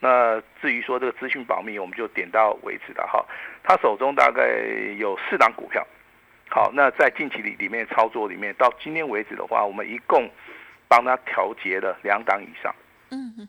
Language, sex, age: Chinese, male, 50-69